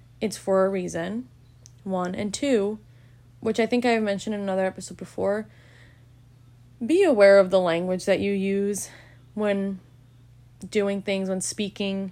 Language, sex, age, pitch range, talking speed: English, female, 10-29, 165-210 Hz, 150 wpm